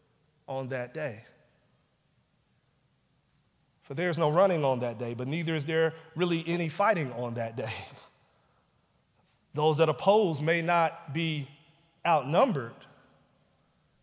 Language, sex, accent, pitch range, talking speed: English, male, American, 120-150 Hz, 115 wpm